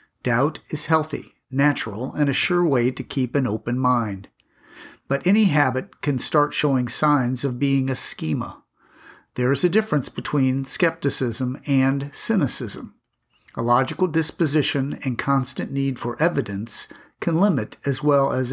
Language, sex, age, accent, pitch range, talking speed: English, male, 50-69, American, 125-155 Hz, 145 wpm